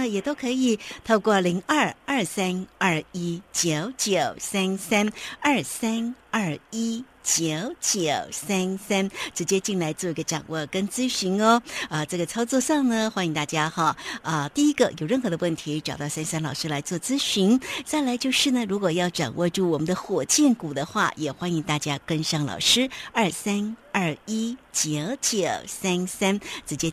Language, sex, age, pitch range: Chinese, female, 60-79, 170-235 Hz